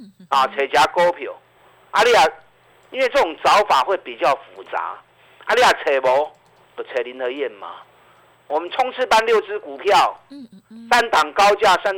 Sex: male